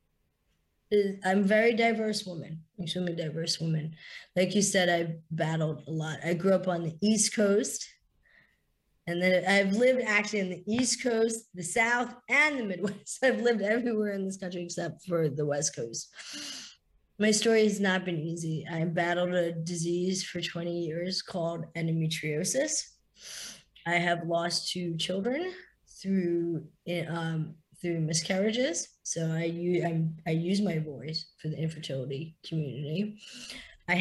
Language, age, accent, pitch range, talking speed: English, 20-39, American, 160-195 Hz, 145 wpm